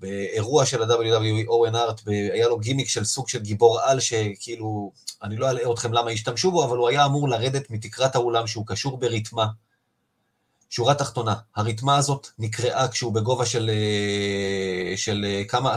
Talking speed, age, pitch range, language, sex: 155 wpm, 30-49, 110-135 Hz, Hebrew, male